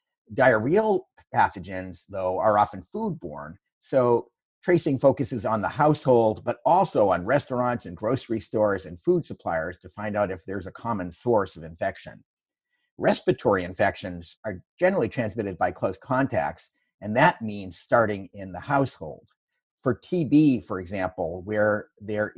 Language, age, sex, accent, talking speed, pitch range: English, 50-69, male, American, 140 wpm, 95-135 Hz